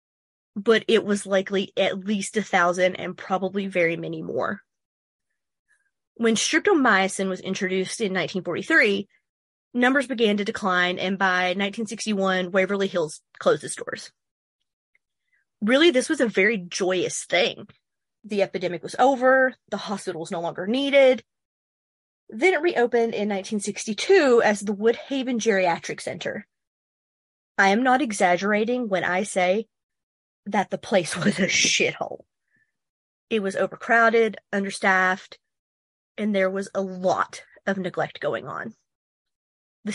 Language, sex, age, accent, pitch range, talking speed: English, female, 30-49, American, 190-230 Hz, 130 wpm